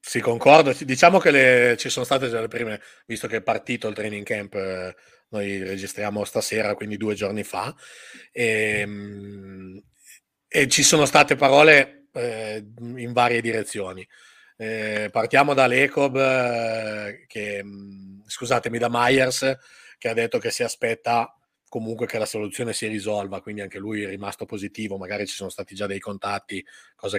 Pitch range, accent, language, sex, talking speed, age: 105-130 Hz, native, Italian, male, 150 wpm, 30-49